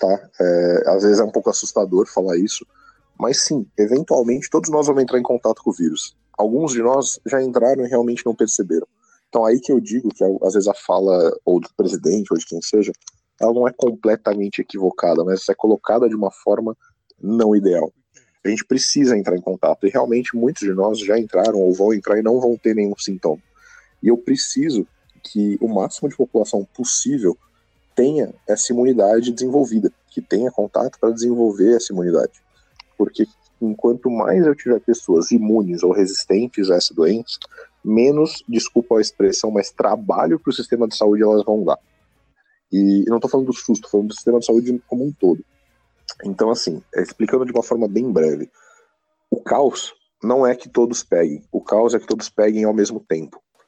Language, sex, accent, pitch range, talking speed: Portuguese, male, Brazilian, 105-130 Hz, 190 wpm